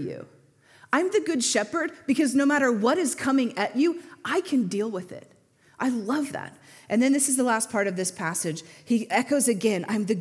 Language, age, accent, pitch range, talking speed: English, 30-49, American, 185-260 Hz, 210 wpm